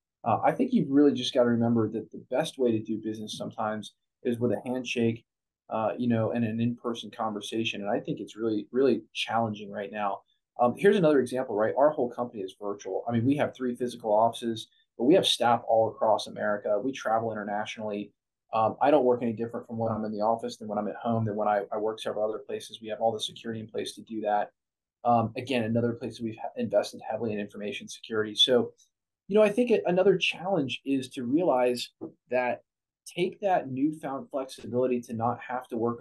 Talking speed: 215 wpm